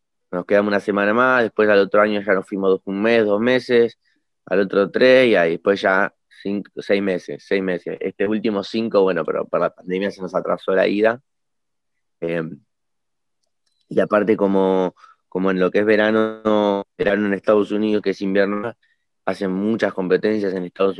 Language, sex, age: Spanish, male, 20-39